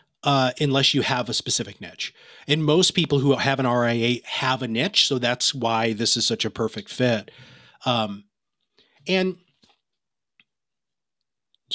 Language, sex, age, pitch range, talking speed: English, male, 30-49, 125-180 Hz, 140 wpm